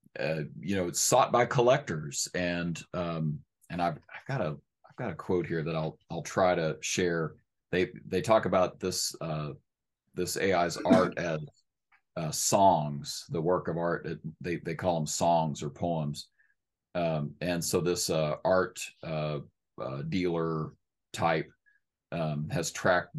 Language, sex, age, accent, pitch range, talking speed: English, male, 40-59, American, 80-95 Hz, 160 wpm